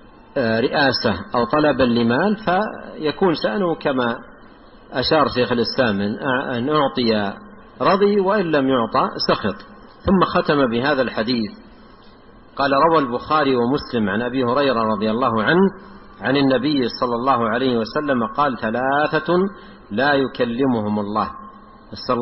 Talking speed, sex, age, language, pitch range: 115 wpm, male, 50-69, Arabic, 125-205 Hz